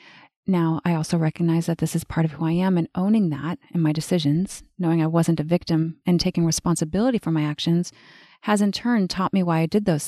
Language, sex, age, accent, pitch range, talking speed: English, female, 30-49, American, 165-195 Hz, 225 wpm